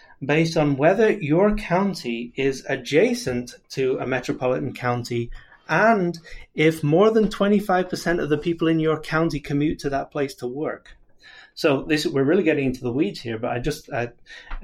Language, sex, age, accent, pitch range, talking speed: English, male, 30-49, British, 120-155 Hz, 165 wpm